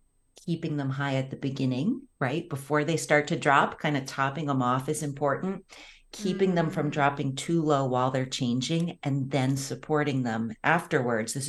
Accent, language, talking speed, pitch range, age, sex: American, English, 180 wpm, 130-160 Hz, 40-59, female